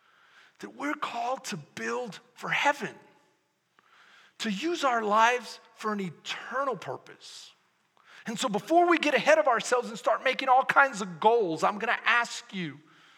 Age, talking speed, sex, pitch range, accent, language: 40-59, 155 wpm, male, 190-270 Hz, American, English